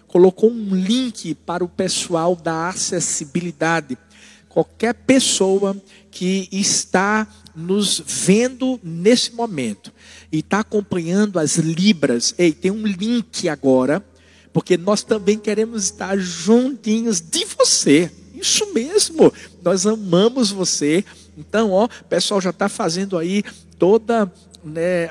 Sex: male